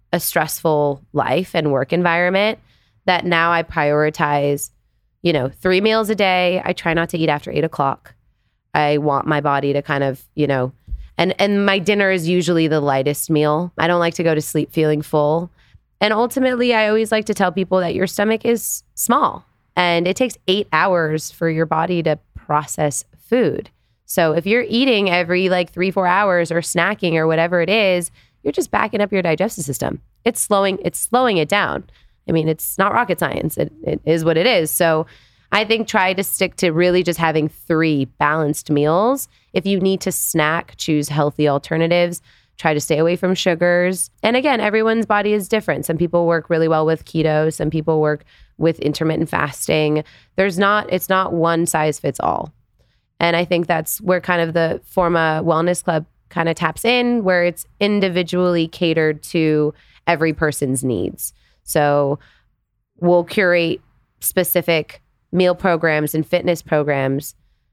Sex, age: female, 20-39